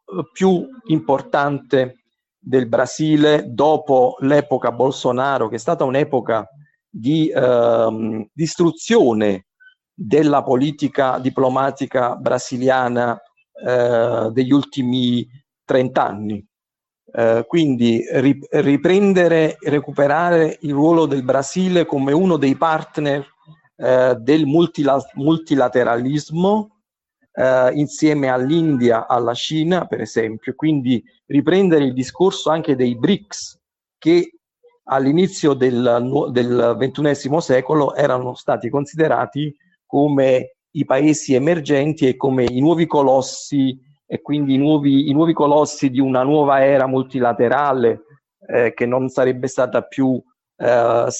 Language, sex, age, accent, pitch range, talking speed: Italian, male, 50-69, native, 125-155 Hz, 105 wpm